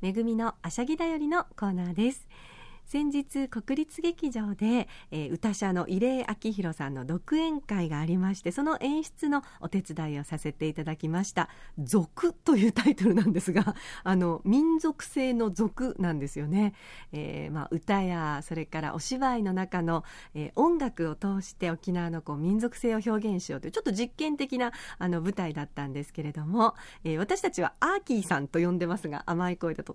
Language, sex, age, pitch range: Japanese, female, 40-59, 170-240 Hz